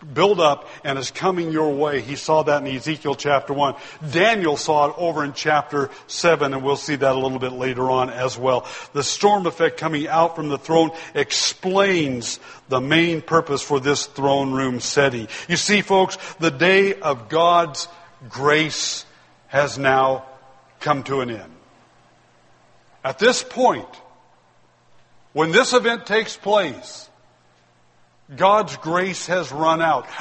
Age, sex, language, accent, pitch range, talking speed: 60-79, male, English, American, 145-195 Hz, 150 wpm